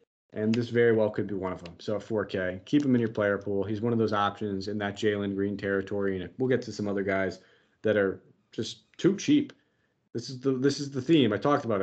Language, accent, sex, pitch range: English, American, male, 100-125 Hz